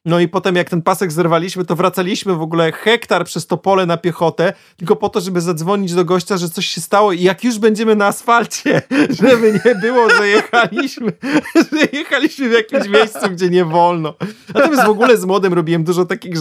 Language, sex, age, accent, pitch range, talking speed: Polish, male, 30-49, native, 155-190 Hz, 200 wpm